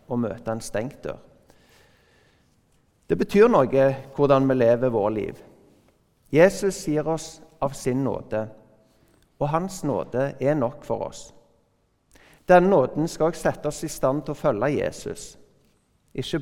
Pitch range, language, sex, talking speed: 120-155 Hz, English, male, 130 wpm